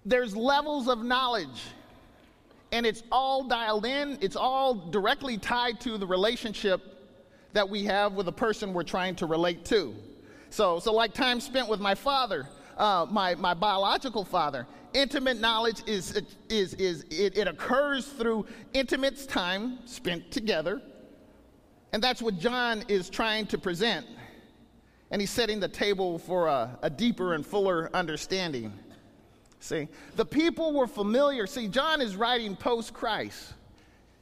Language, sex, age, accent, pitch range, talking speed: English, male, 40-59, American, 205-260 Hz, 145 wpm